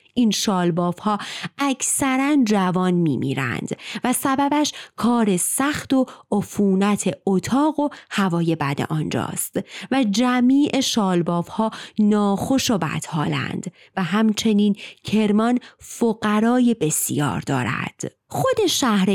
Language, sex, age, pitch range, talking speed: Persian, female, 30-49, 180-265 Hz, 105 wpm